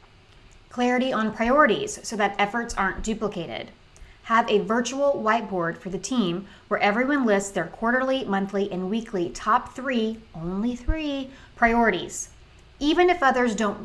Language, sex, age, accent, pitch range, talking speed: English, female, 30-49, American, 185-245 Hz, 140 wpm